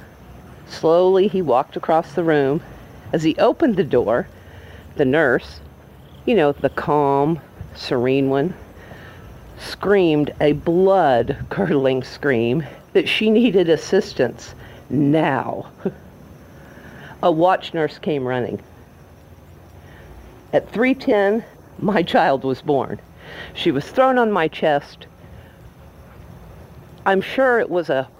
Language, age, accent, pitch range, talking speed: English, 50-69, American, 125-190 Hz, 105 wpm